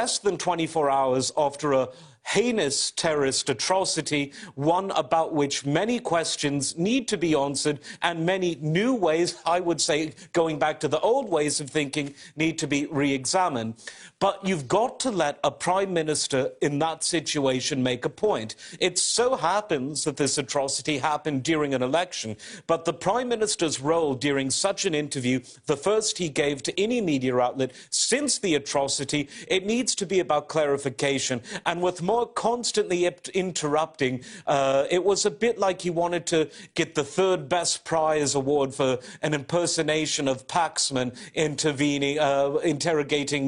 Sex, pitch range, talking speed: male, 140-175 Hz, 160 wpm